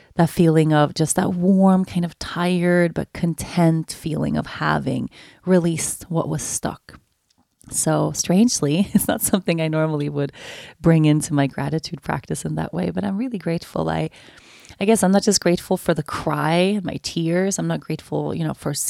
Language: English